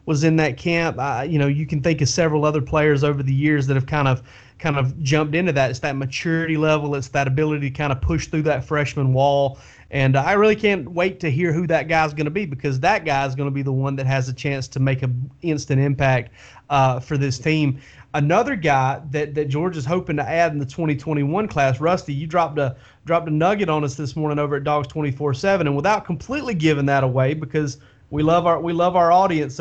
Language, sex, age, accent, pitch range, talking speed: English, male, 30-49, American, 140-170 Hz, 240 wpm